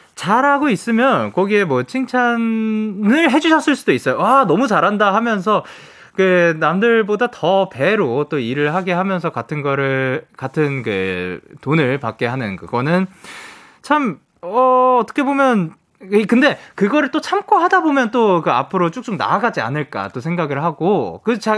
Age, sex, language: 20-39, male, Korean